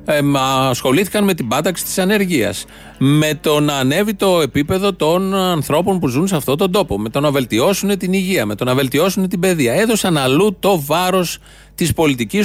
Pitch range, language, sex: 135-185 Hz, Greek, male